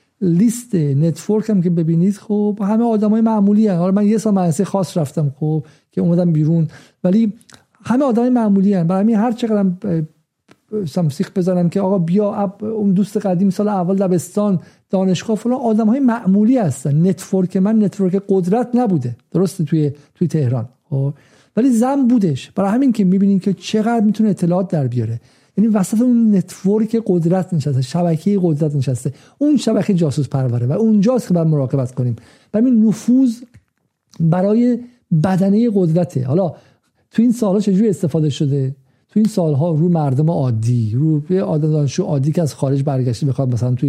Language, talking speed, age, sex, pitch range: Persian, 165 wpm, 50-69, male, 150-215 Hz